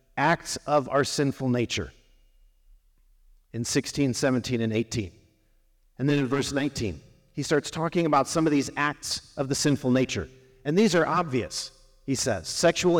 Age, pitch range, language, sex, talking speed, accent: 50-69, 135-180 Hz, English, male, 155 wpm, American